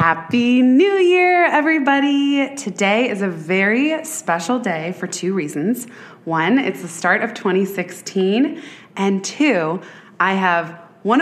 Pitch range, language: 170-210 Hz, English